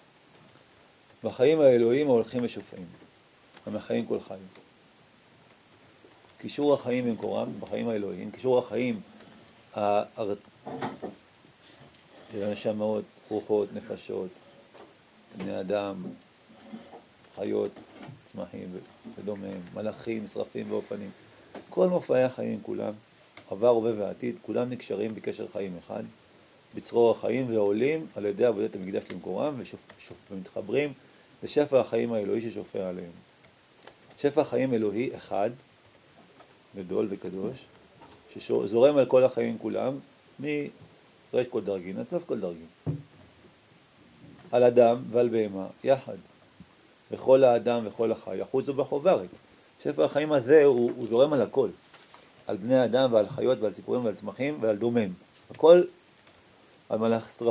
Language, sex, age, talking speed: Hebrew, male, 40-59, 110 wpm